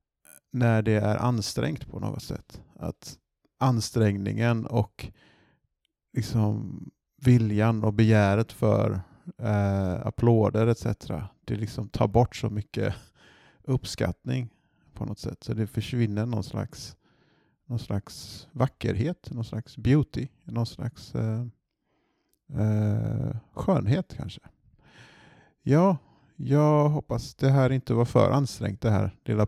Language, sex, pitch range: Swedish, male, 105-125 Hz